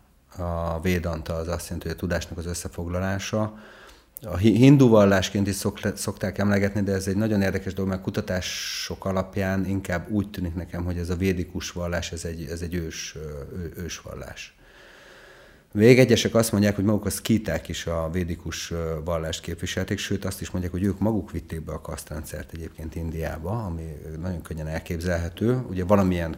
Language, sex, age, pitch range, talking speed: Hungarian, male, 30-49, 80-95 Hz, 170 wpm